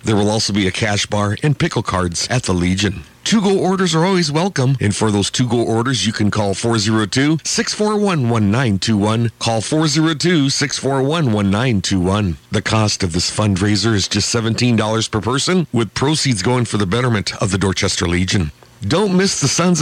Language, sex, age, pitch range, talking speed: English, male, 50-69, 105-140 Hz, 160 wpm